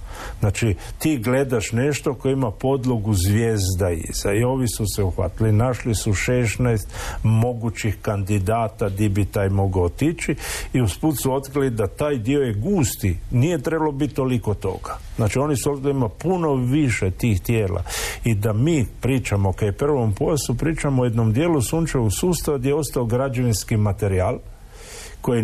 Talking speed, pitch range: 155 wpm, 100-130 Hz